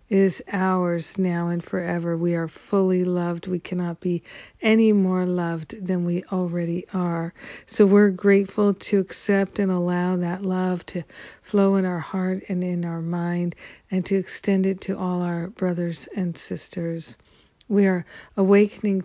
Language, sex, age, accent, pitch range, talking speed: English, female, 50-69, American, 175-195 Hz, 160 wpm